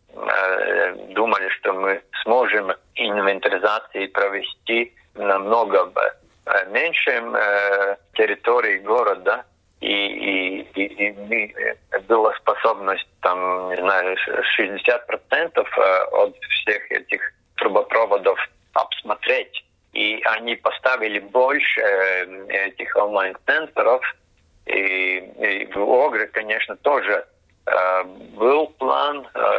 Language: Russian